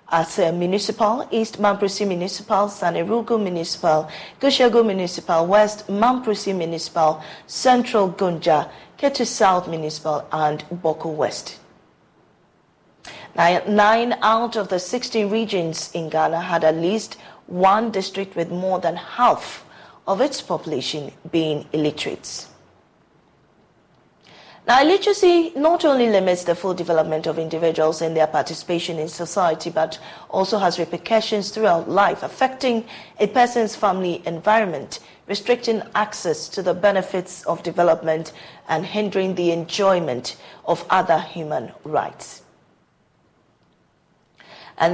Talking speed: 115 wpm